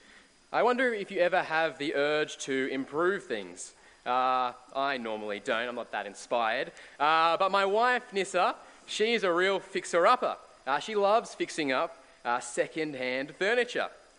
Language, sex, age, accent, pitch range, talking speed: English, male, 20-39, Australian, 125-185 Hz, 150 wpm